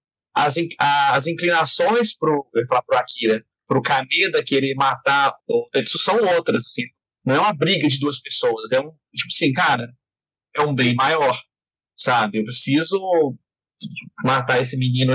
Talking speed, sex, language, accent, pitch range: 160 wpm, male, Portuguese, Brazilian, 130-205 Hz